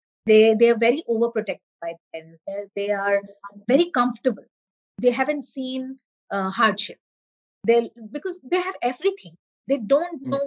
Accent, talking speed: native, 145 wpm